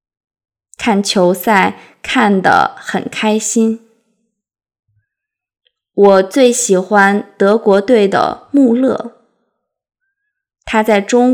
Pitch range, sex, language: 195-240 Hz, female, Chinese